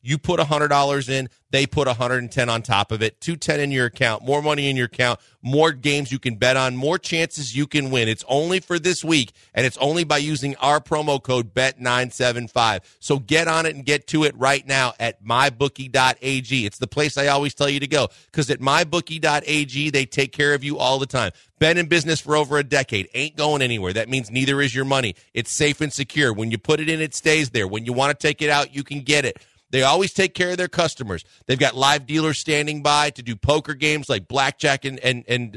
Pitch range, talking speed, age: 125-150 Hz, 235 wpm, 40-59